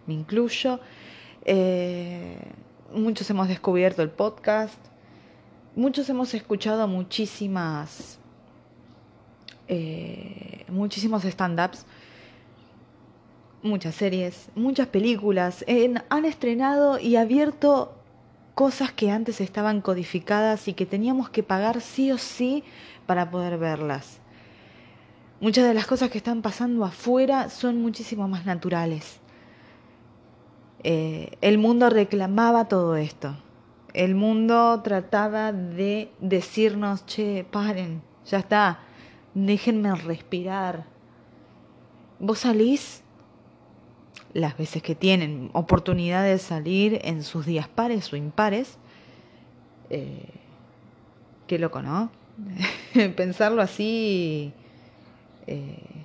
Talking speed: 95 wpm